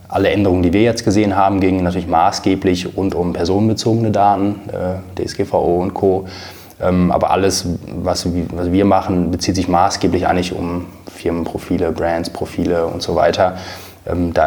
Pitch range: 90-95 Hz